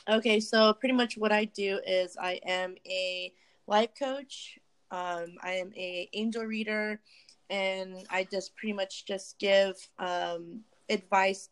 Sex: female